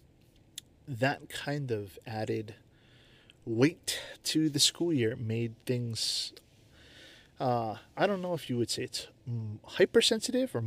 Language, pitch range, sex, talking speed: English, 115-145 Hz, male, 125 wpm